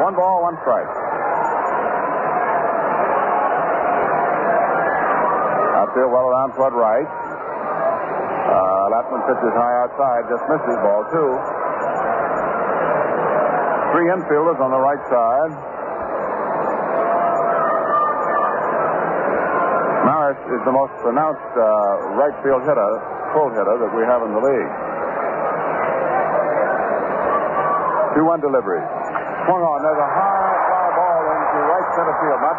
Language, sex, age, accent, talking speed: English, male, 60-79, American, 105 wpm